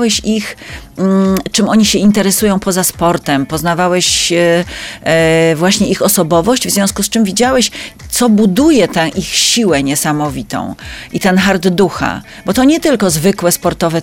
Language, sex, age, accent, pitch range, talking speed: Polish, female, 40-59, native, 170-215 Hz, 135 wpm